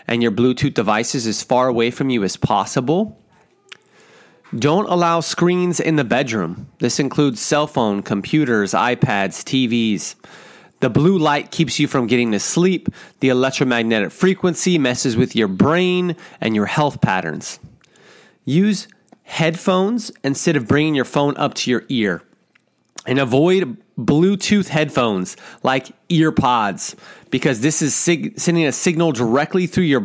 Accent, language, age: American, English, 30-49